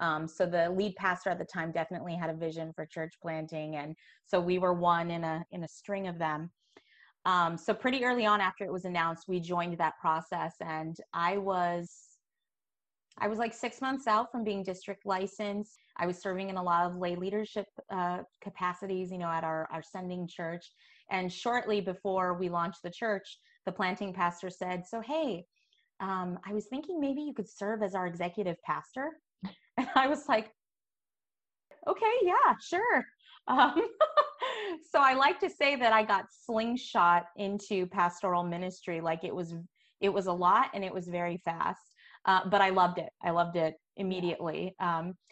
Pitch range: 175-215 Hz